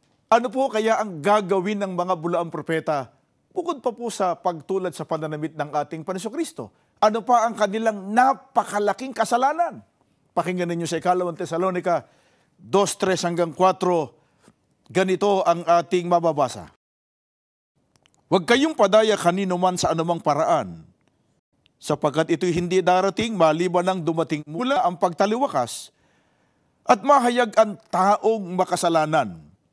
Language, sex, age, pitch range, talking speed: Filipino, male, 50-69, 170-220 Hz, 115 wpm